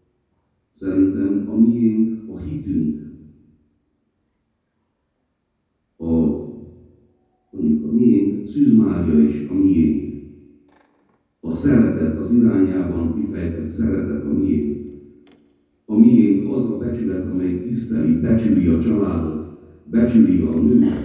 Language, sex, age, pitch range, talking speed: Hungarian, male, 50-69, 70-90 Hz, 90 wpm